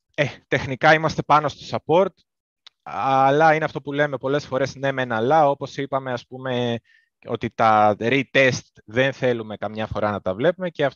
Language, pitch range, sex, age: Greek, 105-140 Hz, male, 20-39